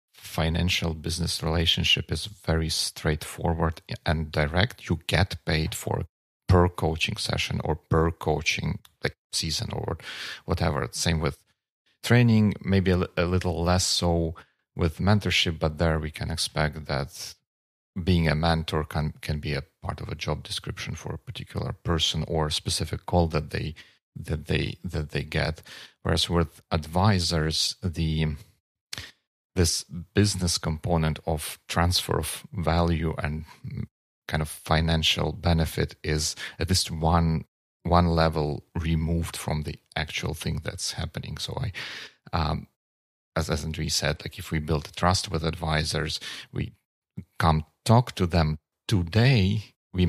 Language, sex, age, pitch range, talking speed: Russian, male, 40-59, 80-90 Hz, 140 wpm